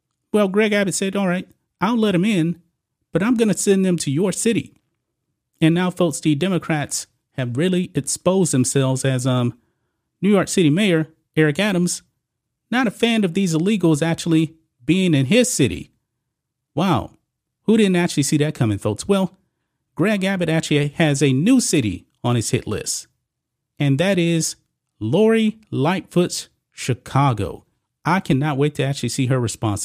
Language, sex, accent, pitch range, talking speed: English, male, American, 130-180 Hz, 165 wpm